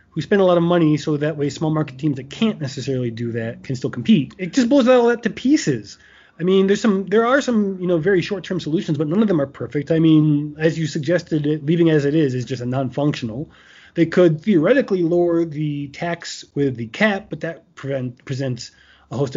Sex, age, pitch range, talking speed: male, 30-49, 140-180 Hz, 230 wpm